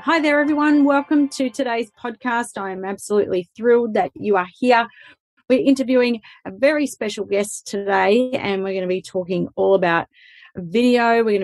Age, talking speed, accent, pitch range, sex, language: 30-49, 175 wpm, Australian, 195-235 Hz, female, English